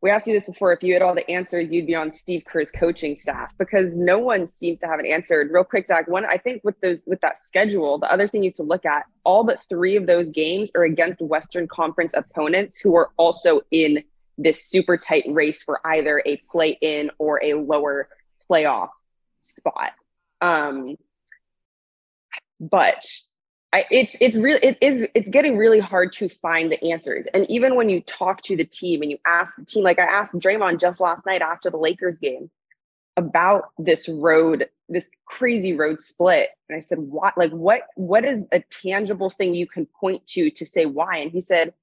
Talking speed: 200 wpm